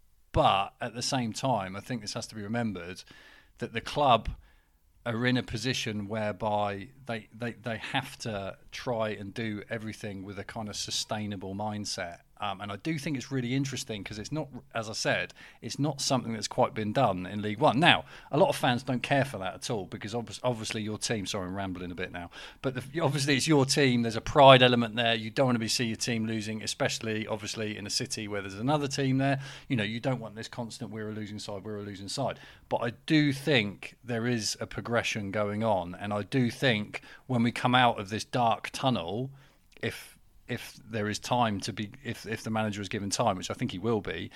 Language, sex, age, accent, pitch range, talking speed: English, male, 40-59, British, 100-125 Hz, 225 wpm